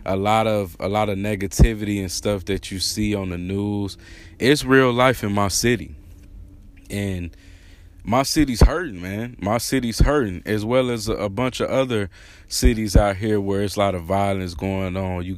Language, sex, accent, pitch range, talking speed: English, male, American, 90-110 Hz, 185 wpm